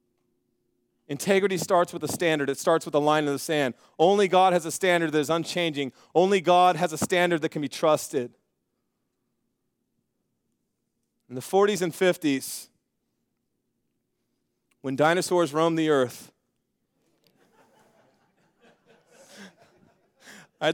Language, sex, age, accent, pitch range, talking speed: English, male, 30-49, American, 140-175 Hz, 120 wpm